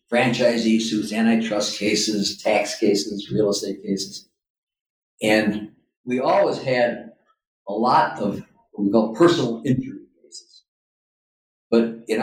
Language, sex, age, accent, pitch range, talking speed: English, male, 50-69, American, 105-130 Hz, 120 wpm